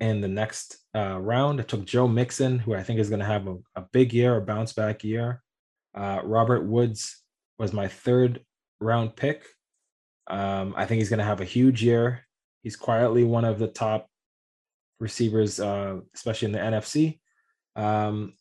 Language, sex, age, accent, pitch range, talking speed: English, male, 20-39, American, 105-125 Hz, 175 wpm